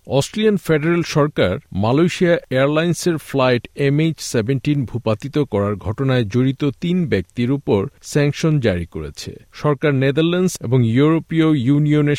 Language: Bengali